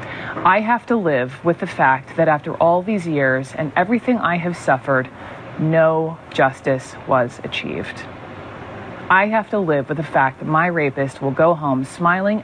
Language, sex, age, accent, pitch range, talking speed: English, female, 30-49, American, 130-165 Hz, 170 wpm